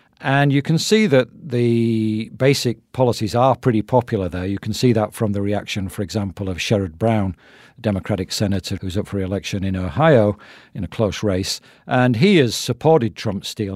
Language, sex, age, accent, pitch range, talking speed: English, male, 50-69, British, 100-125 Hz, 190 wpm